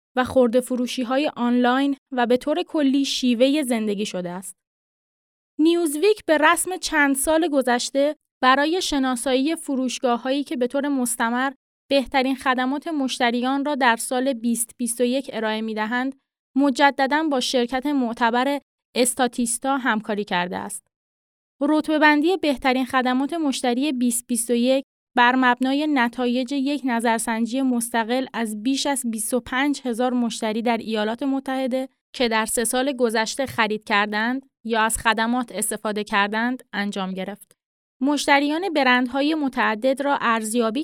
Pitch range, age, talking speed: 235-280 Hz, 20-39, 125 wpm